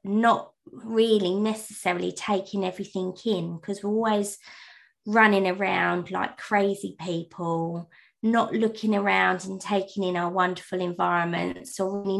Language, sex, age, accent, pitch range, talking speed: English, female, 20-39, British, 185-220 Hz, 125 wpm